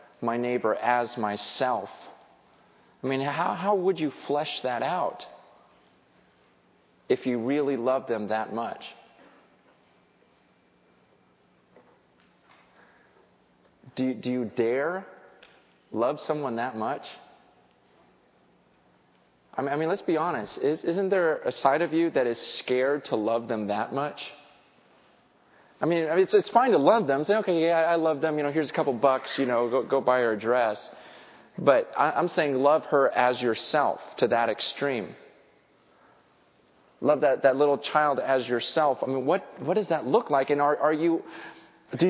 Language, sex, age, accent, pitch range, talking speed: English, male, 30-49, American, 125-180 Hz, 150 wpm